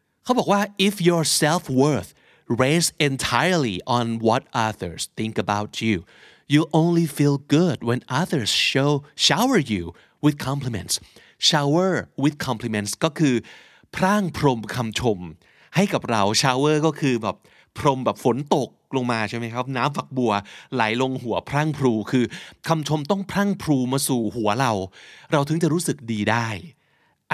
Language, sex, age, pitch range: Thai, male, 30-49, 110-150 Hz